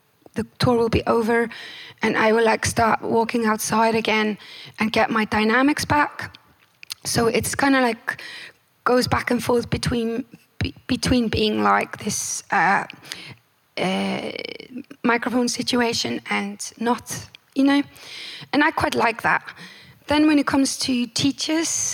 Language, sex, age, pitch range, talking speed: English, female, 20-39, 220-275 Hz, 140 wpm